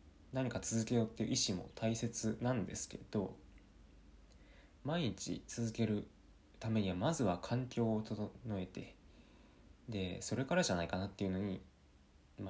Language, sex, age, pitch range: Japanese, male, 20-39, 85-120 Hz